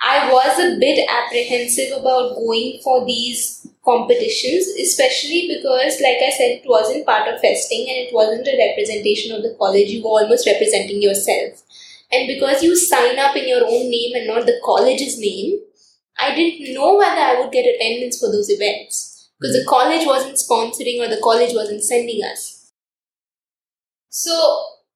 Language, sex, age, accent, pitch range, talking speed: English, female, 20-39, Indian, 255-420 Hz, 170 wpm